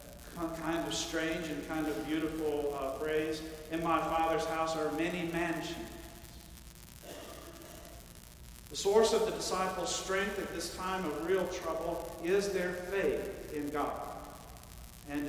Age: 50-69